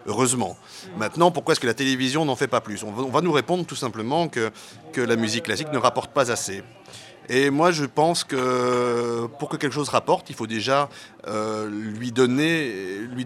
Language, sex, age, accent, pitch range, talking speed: French, male, 30-49, French, 110-150 Hz, 195 wpm